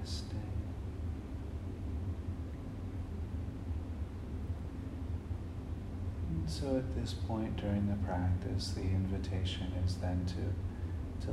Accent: American